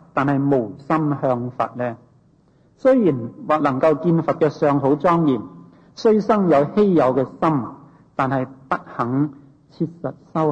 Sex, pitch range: male, 130-170 Hz